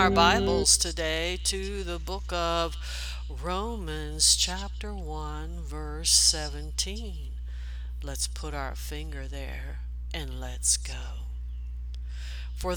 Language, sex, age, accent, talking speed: English, female, 60-79, American, 95 wpm